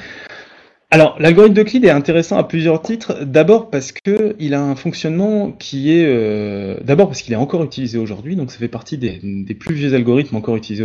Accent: French